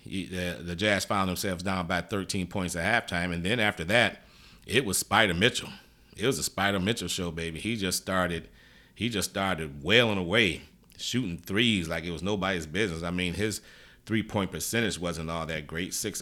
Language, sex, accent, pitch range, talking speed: English, male, American, 85-100 Hz, 190 wpm